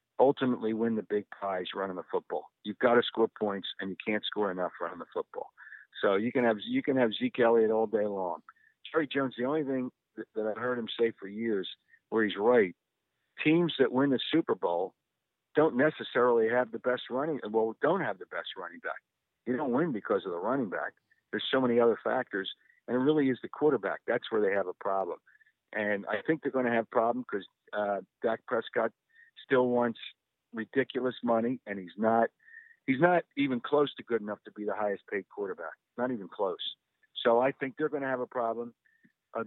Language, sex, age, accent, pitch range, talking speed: English, male, 50-69, American, 110-155 Hz, 205 wpm